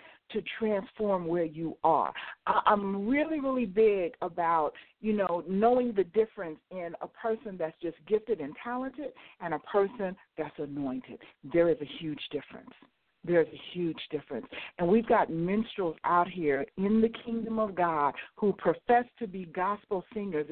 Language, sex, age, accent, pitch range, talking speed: English, female, 60-79, American, 170-230 Hz, 160 wpm